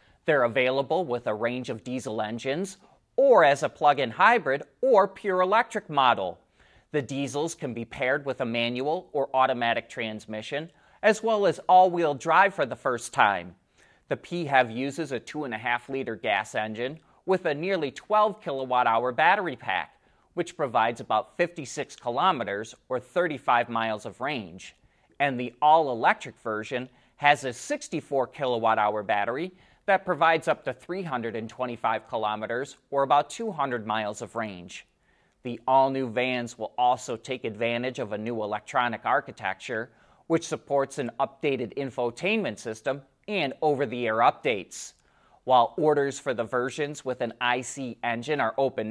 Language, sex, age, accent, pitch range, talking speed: English, male, 30-49, American, 120-160 Hz, 145 wpm